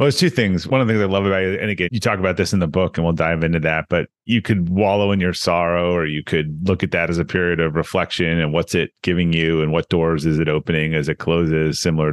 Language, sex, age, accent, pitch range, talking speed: English, male, 30-49, American, 90-120 Hz, 290 wpm